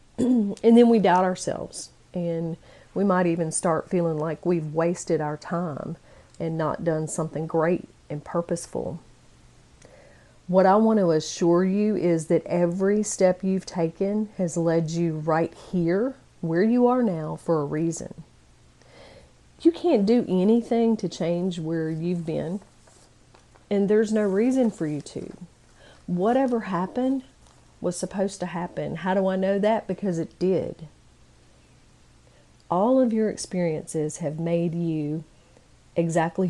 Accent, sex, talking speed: American, female, 140 wpm